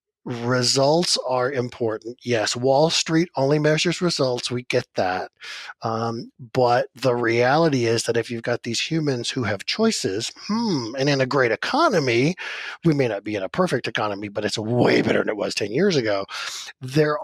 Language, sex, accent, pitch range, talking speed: English, male, American, 115-145 Hz, 180 wpm